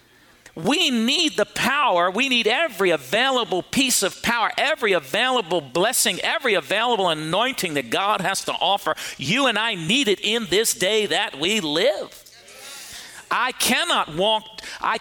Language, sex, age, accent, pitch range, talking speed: English, male, 50-69, American, 155-210 Hz, 150 wpm